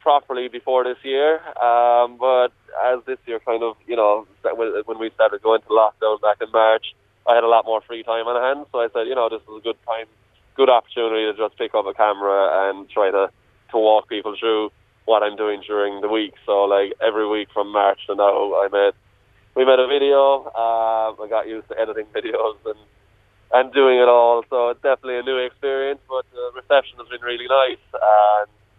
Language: English